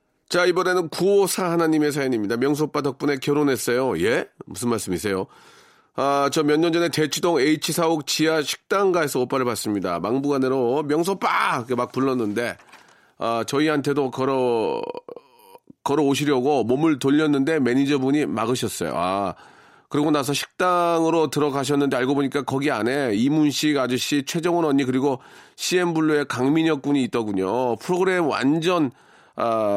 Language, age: Korean, 40-59